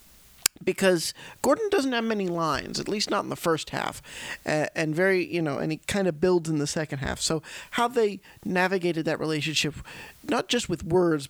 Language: English